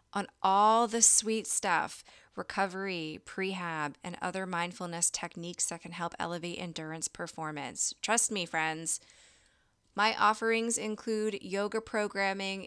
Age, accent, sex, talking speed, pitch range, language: 20-39, American, female, 120 wpm, 165-195 Hz, English